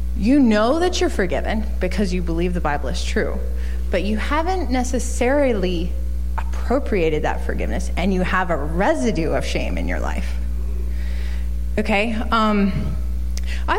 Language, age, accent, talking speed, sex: English, 20-39, American, 140 wpm, female